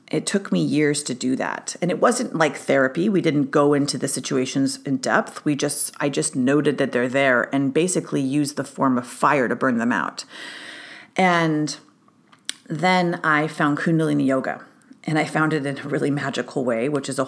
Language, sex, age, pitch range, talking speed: English, female, 40-59, 140-175 Hz, 200 wpm